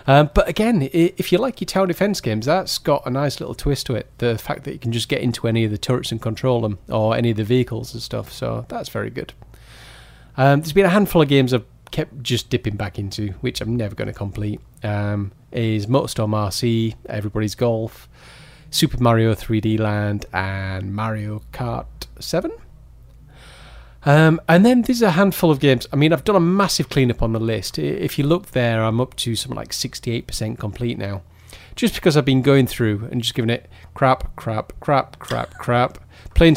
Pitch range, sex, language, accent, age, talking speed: 110-145 Hz, male, English, British, 30-49, 200 wpm